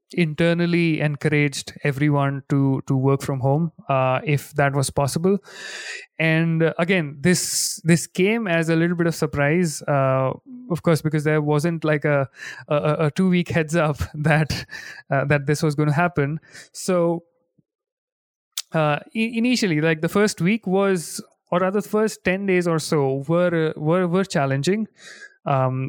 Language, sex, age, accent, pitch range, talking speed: English, male, 30-49, Indian, 145-180 Hz, 155 wpm